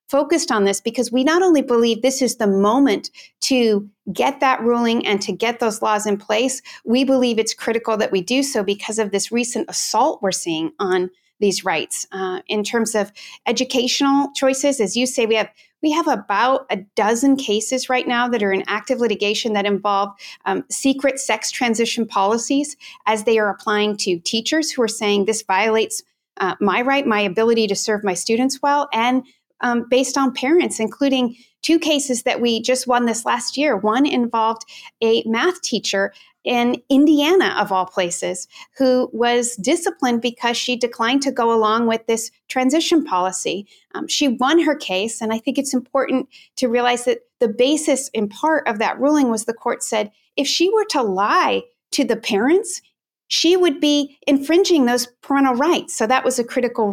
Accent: American